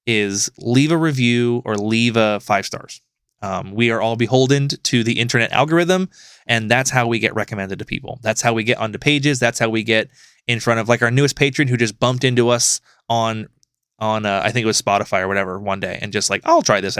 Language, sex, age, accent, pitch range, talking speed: English, male, 20-39, American, 115-150 Hz, 235 wpm